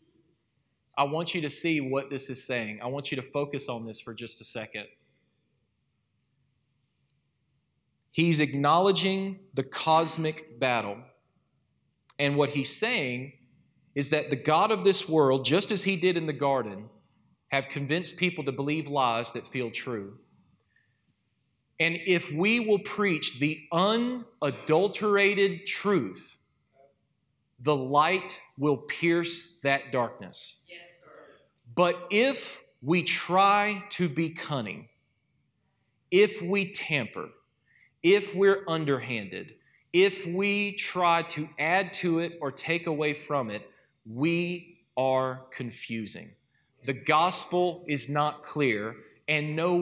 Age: 30-49